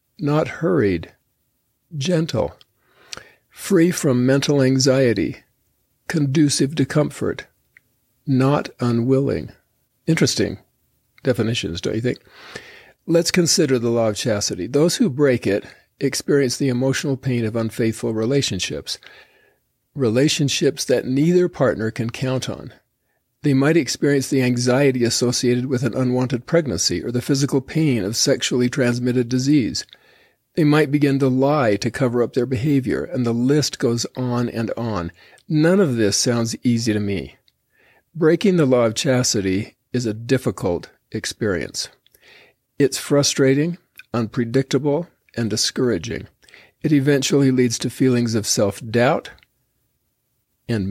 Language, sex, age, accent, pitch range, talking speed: English, male, 50-69, American, 120-145 Hz, 125 wpm